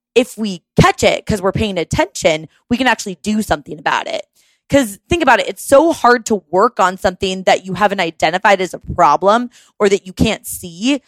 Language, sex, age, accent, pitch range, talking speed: English, female, 20-39, American, 180-260 Hz, 205 wpm